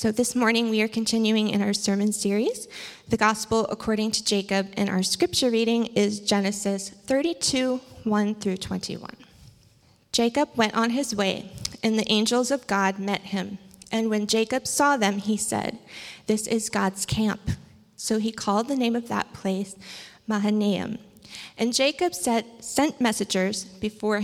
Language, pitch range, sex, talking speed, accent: English, 200-235 Hz, female, 155 wpm, American